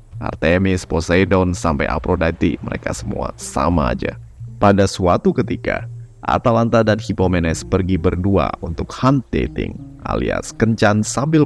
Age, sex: 20-39, male